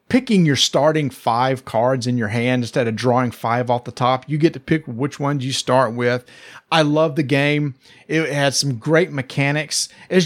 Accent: American